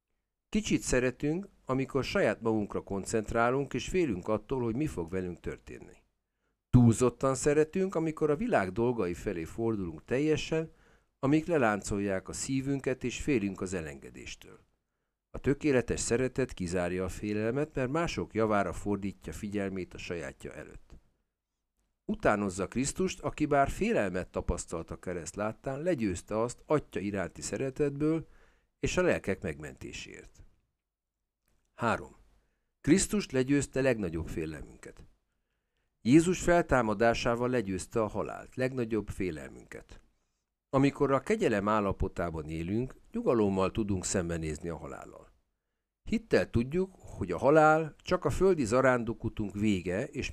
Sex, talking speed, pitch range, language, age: male, 115 wpm, 95-140 Hz, Hungarian, 50-69